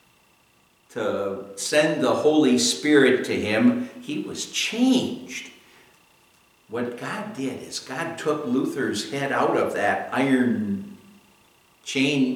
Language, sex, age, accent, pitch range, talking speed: English, male, 60-79, American, 120-150 Hz, 110 wpm